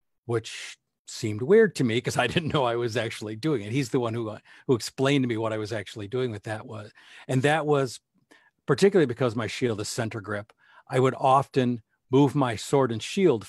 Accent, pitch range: American, 110-135 Hz